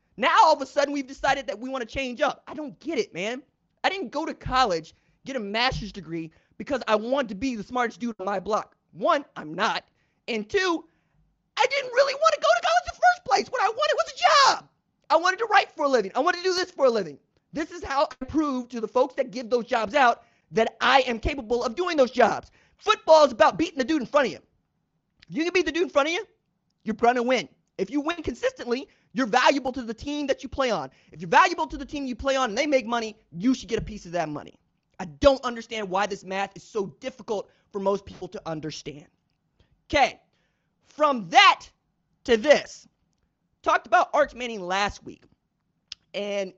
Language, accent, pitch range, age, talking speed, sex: English, American, 200-295 Hz, 30-49, 230 wpm, male